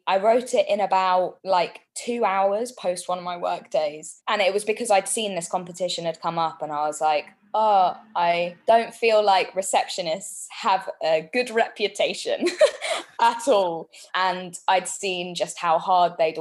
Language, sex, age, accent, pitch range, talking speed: English, female, 20-39, British, 165-200 Hz, 175 wpm